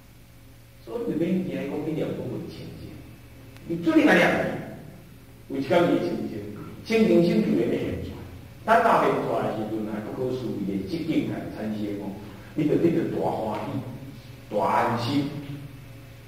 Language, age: Chinese, 50-69